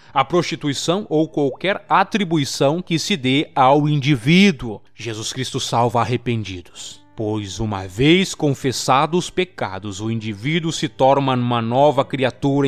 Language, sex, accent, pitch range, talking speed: Portuguese, male, Brazilian, 115-165 Hz, 130 wpm